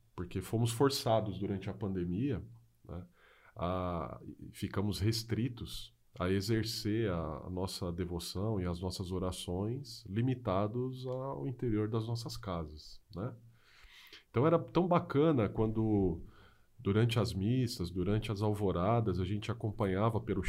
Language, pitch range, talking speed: Portuguese, 95-120 Hz, 125 wpm